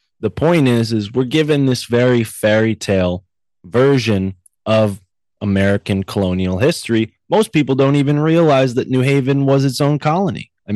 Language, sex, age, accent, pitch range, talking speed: English, male, 20-39, American, 100-130 Hz, 155 wpm